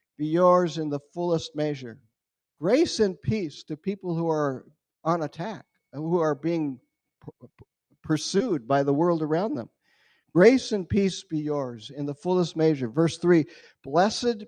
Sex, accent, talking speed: male, American, 150 wpm